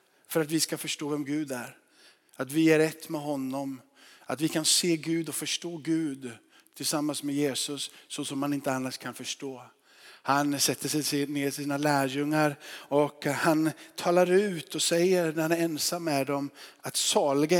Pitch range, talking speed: 145-195 Hz, 180 wpm